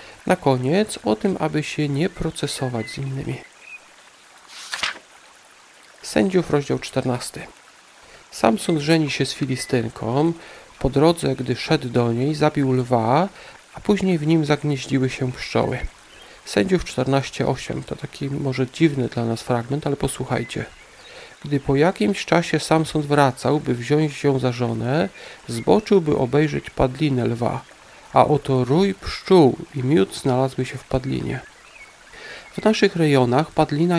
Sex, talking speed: male, 130 wpm